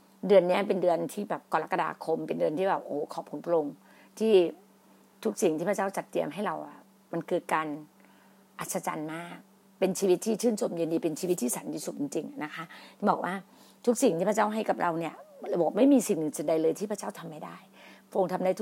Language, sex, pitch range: Thai, female, 170-215 Hz